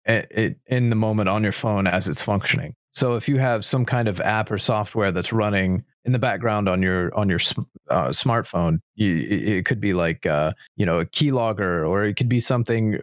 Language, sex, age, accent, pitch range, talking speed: English, male, 30-49, American, 100-125 Hz, 215 wpm